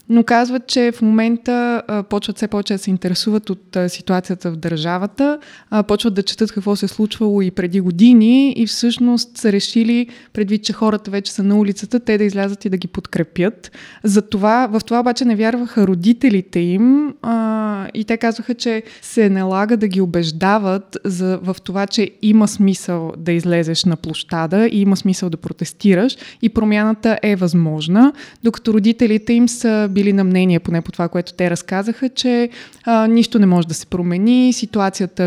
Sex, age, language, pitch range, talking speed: female, 20-39, Bulgarian, 185-230 Hz, 170 wpm